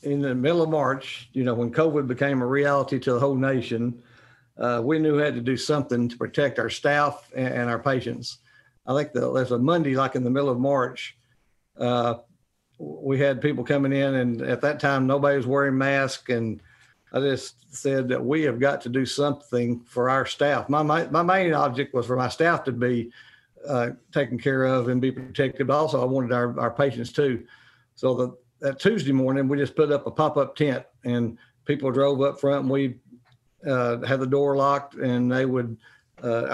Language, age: English, 50-69